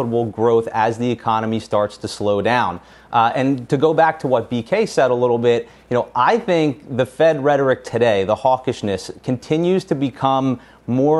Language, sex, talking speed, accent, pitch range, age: English, male, 180 wpm, American, 115-140 Hz, 30-49